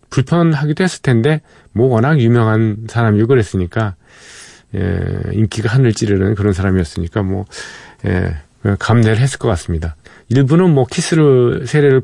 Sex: male